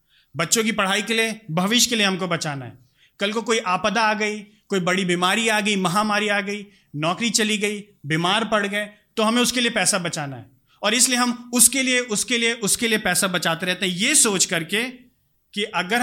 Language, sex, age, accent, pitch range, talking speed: Hindi, male, 30-49, native, 175-220 Hz, 210 wpm